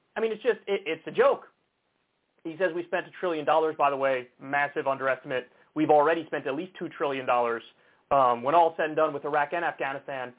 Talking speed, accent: 220 wpm, American